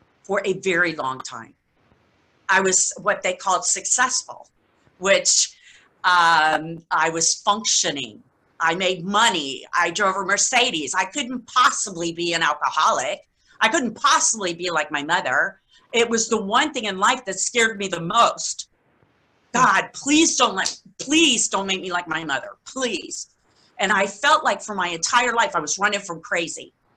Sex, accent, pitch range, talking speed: female, American, 180-245 Hz, 160 wpm